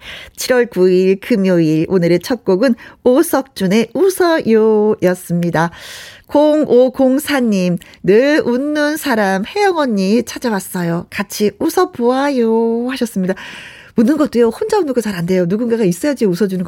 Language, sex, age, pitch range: Korean, female, 40-59, 185-270 Hz